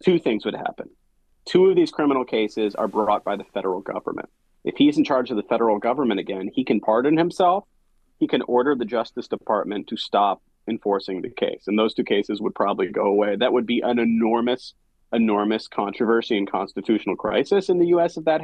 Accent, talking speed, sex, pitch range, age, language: American, 200 wpm, male, 105-150 Hz, 30-49, English